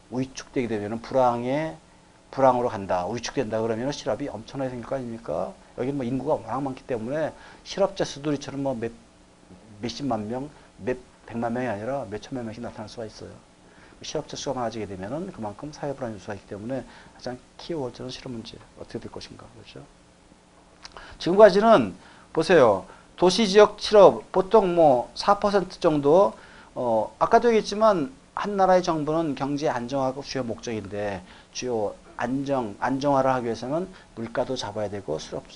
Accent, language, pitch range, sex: native, Korean, 110-145 Hz, male